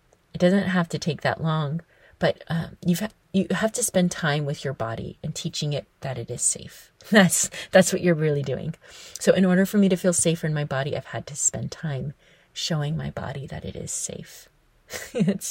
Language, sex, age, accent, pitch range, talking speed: English, female, 30-49, American, 150-180 Hz, 215 wpm